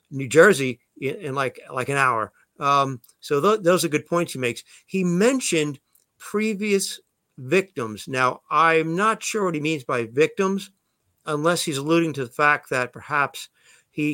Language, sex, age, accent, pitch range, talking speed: English, male, 50-69, American, 135-165 Hz, 160 wpm